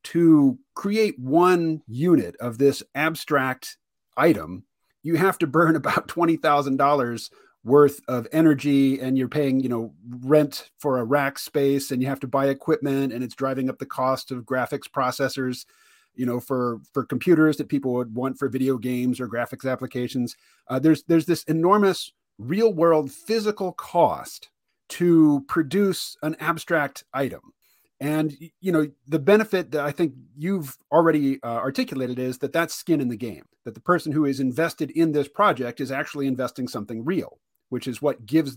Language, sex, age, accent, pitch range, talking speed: English, male, 40-59, American, 130-160 Hz, 170 wpm